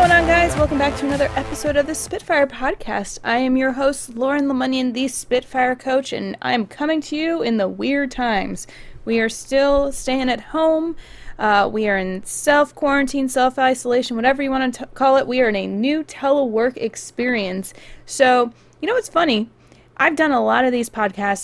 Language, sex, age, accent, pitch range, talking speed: English, female, 20-39, American, 215-280 Hz, 190 wpm